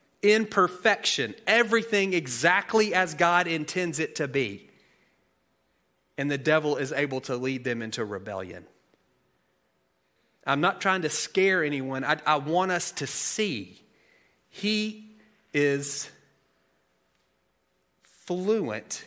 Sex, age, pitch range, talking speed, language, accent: male, 30-49, 130-175 Hz, 110 wpm, English, American